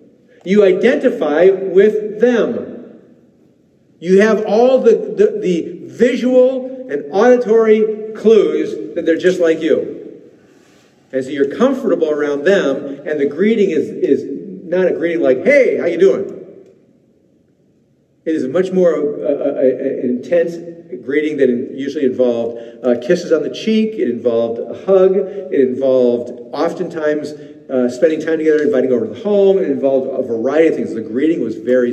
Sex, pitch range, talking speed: male, 150-250 Hz, 155 wpm